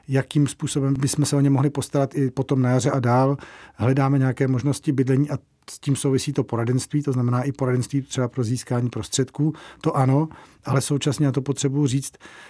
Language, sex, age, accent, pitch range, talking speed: Czech, male, 40-59, native, 130-140 Hz, 190 wpm